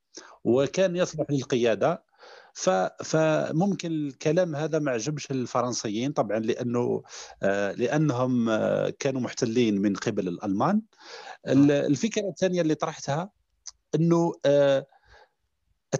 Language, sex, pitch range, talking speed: Arabic, male, 120-155 Hz, 85 wpm